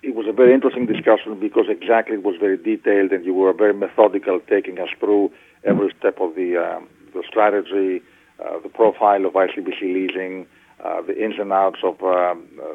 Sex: male